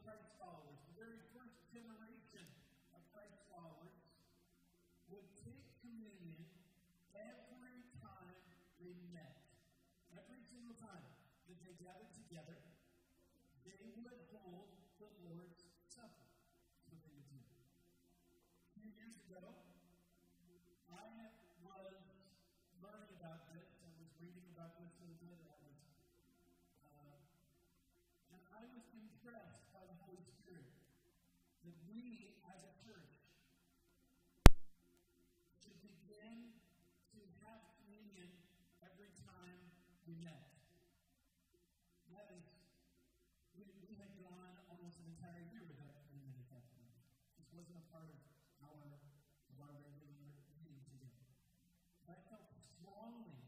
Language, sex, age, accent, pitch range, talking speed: English, male, 40-59, American, 140-190 Hz, 105 wpm